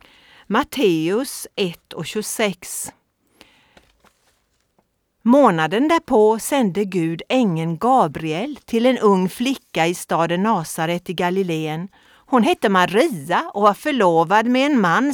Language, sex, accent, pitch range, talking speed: Swedish, female, native, 175-255 Hz, 110 wpm